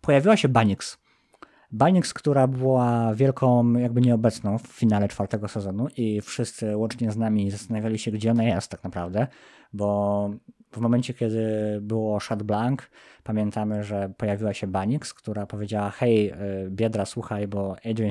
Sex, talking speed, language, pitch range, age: male, 145 wpm, Polish, 110-135 Hz, 20-39